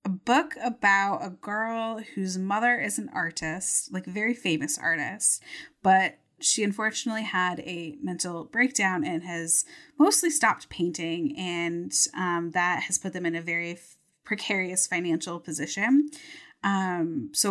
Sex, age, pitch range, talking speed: female, 20-39, 170-215 Hz, 140 wpm